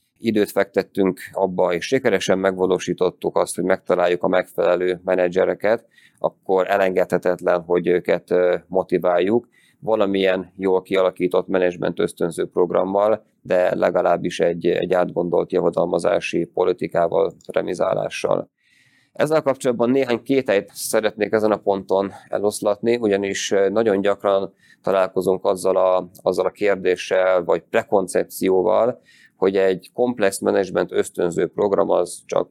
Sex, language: male, Hungarian